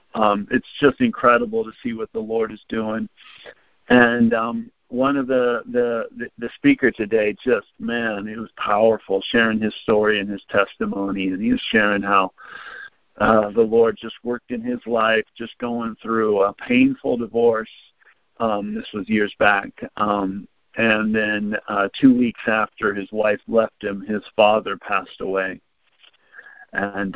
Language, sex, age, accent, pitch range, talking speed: English, male, 50-69, American, 110-130 Hz, 155 wpm